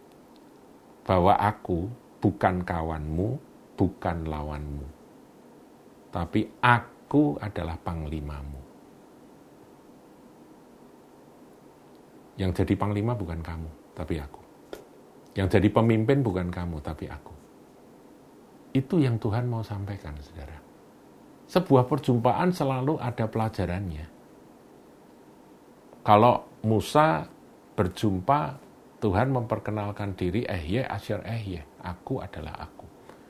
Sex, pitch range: male, 90-120 Hz